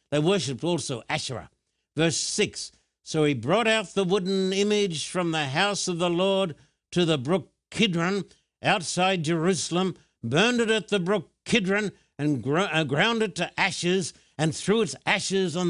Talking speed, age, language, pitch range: 155 wpm, 60-79, English, 160-205 Hz